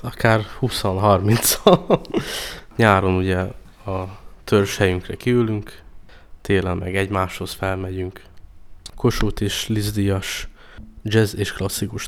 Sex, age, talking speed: male, 20-39, 90 wpm